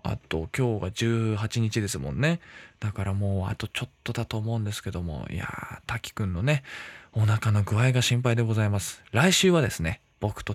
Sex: male